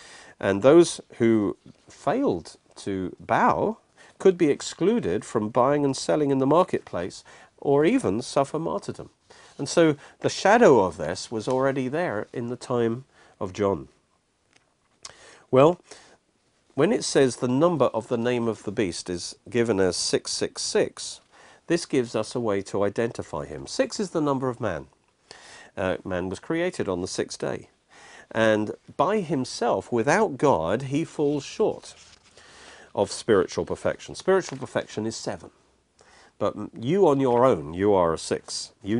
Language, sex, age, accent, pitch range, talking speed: English, male, 50-69, British, 105-145 Hz, 150 wpm